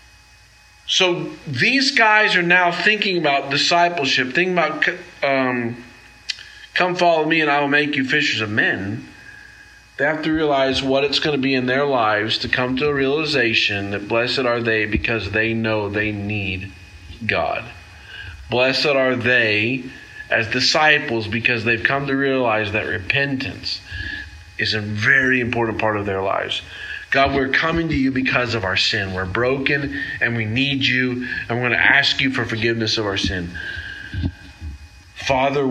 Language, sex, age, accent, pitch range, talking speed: English, male, 40-59, American, 100-135 Hz, 160 wpm